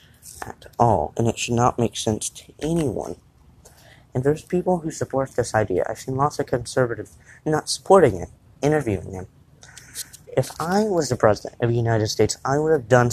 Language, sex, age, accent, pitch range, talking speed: English, male, 30-49, American, 110-135 Hz, 185 wpm